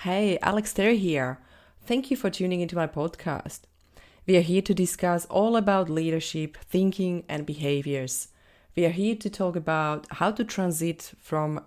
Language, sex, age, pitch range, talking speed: English, female, 30-49, 150-185 Hz, 165 wpm